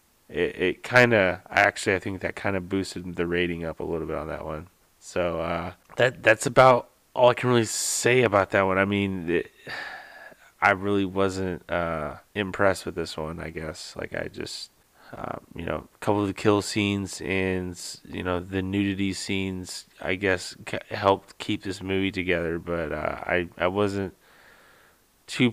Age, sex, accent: 30-49, male, American